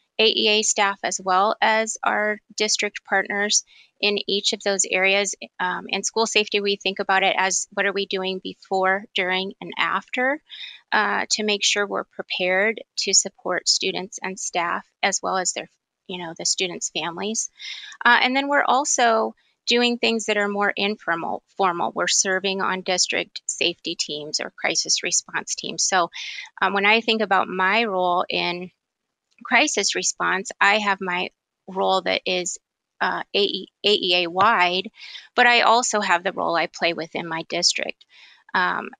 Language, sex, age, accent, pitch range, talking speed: English, female, 30-49, American, 185-215 Hz, 160 wpm